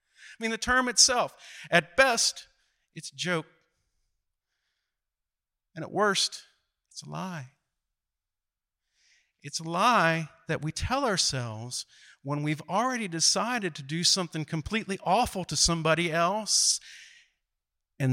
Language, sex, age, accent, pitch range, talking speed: English, male, 50-69, American, 120-175 Hz, 120 wpm